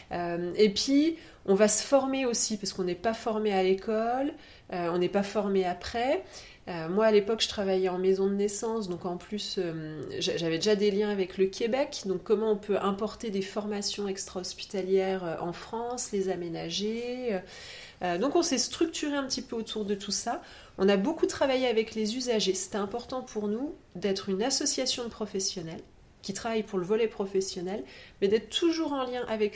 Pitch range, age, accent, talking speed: 190-235 Hz, 30-49, French, 180 wpm